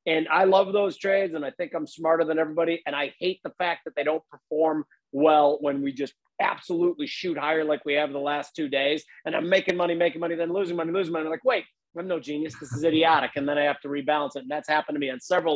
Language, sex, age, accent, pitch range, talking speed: English, male, 40-59, American, 150-190 Hz, 270 wpm